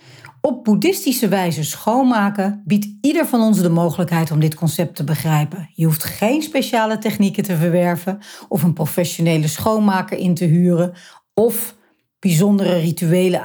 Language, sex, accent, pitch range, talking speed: Dutch, female, Dutch, 160-205 Hz, 145 wpm